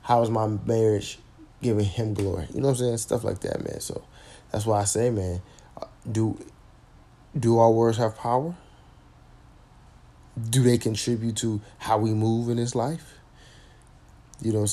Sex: male